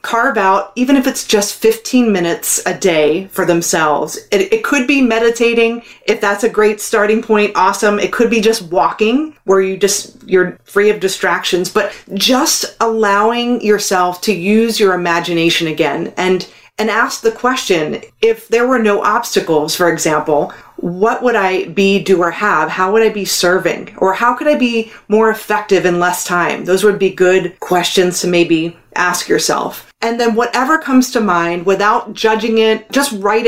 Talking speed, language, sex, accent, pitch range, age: 175 wpm, English, female, American, 185-230 Hz, 30-49